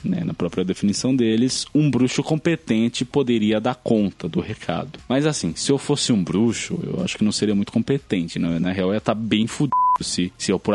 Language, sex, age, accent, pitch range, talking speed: Portuguese, male, 20-39, Brazilian, 95-140 Hz, 210 wpm